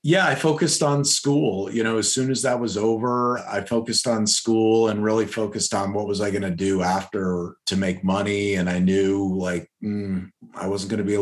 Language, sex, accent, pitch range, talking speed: English, male, American, 90-105 Hz, 225 wpm